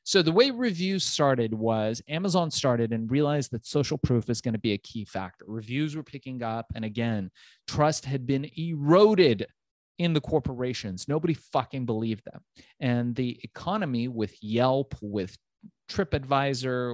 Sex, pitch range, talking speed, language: male, 115-145 Hz, 155 wpm, English